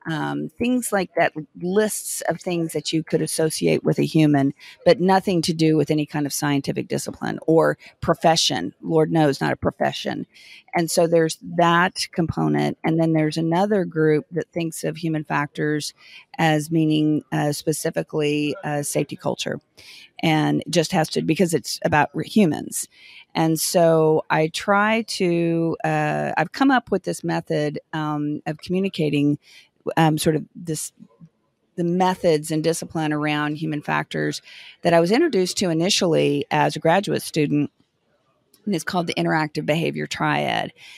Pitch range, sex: 150-170 Hz, female